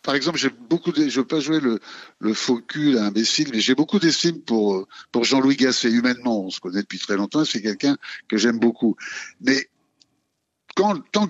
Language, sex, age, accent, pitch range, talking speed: French, male, 60-79, French, 115-150 Hz, 195 wpm